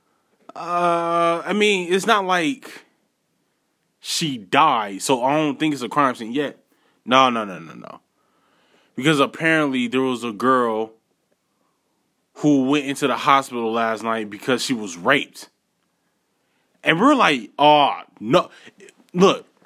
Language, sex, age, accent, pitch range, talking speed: English, male, 20-39, American, 150-220 Hz, 135 wpm